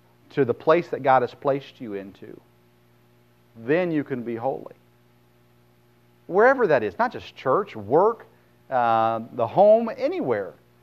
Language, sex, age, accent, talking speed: English, male, 40-59, American, 140 wpm